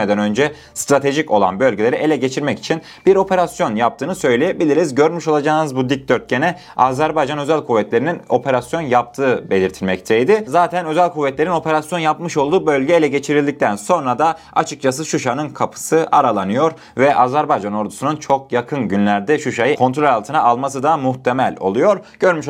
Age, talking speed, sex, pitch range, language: 30-49, 135 wpm, male, 125-170 Hz, Turkish